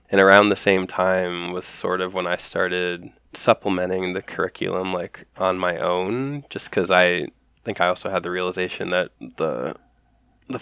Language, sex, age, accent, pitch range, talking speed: English, male, 20-39, American, 90-95 Hz, 170 wpm